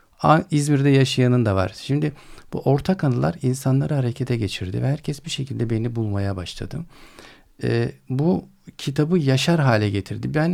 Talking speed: 135 wpm